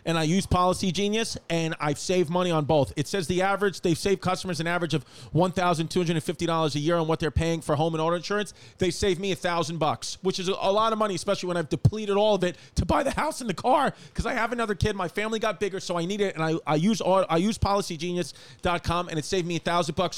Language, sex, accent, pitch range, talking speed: English, male, American, 165-195 Hz, 255 wpm